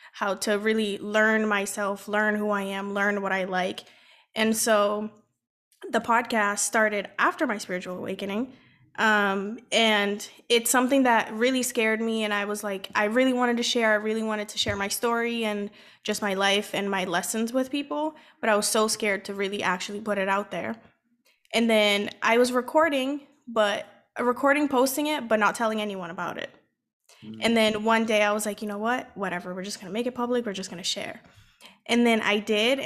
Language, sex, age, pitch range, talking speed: English, female, 20-39, 205-235 Hz, 200 wpm